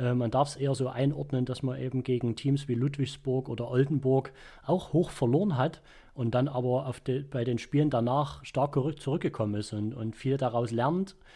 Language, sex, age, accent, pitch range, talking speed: German, male, 30-49, German, 120-150 Hz, 190 wpm